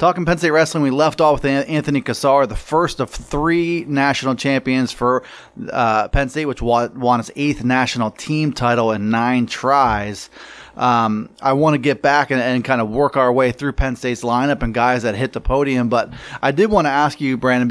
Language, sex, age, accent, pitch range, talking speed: English, male, 30-49, American, 120-150 Hz, 205 wpm